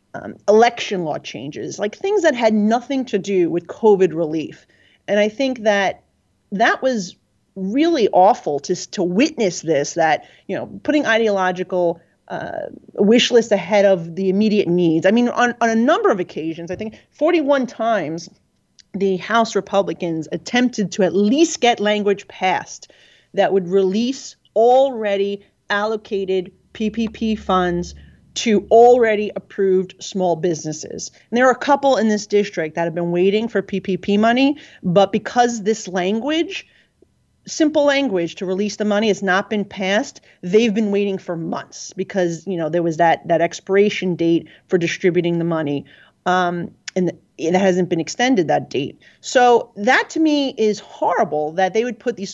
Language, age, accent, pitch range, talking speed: English, 30-49, American, 180-230 Hz, 160 wpm